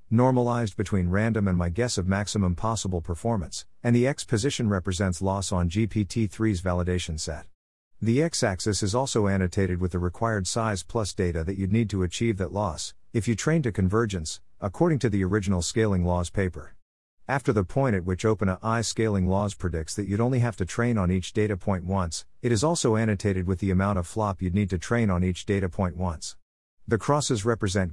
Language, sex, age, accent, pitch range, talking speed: English, male, 50-69, American, 90-115 Hz, 195 wpm